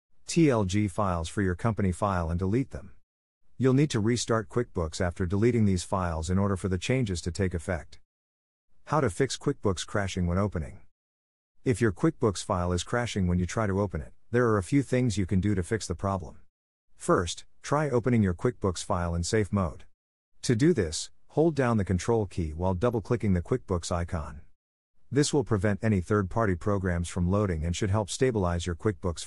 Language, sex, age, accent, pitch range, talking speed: English, male, 50-69, American, 90-115 Hz, 195 wpm